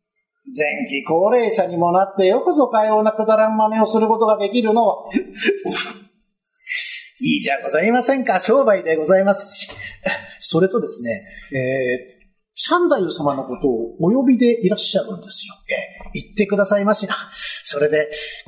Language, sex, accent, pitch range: Japanese, male, native, 195-245 Hz